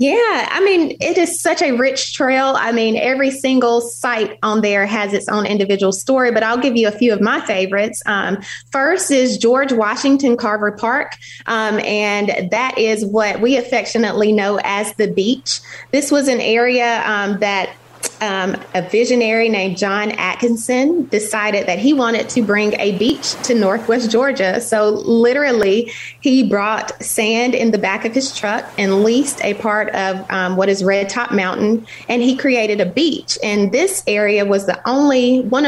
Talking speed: 175 wpm